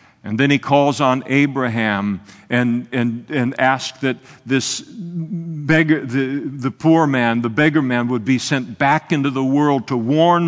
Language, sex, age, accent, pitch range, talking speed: English, male, 50-69, American, 120-145 Hz, 165 wpm